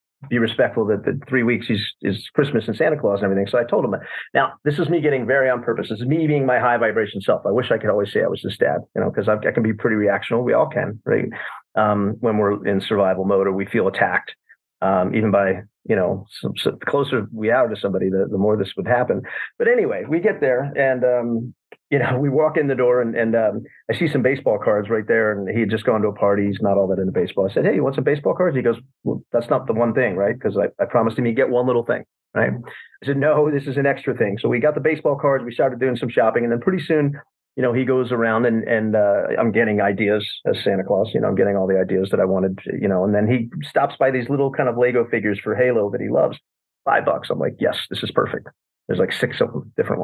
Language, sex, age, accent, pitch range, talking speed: English, male, 40-59, American, 105-135 Hz, 275 wpm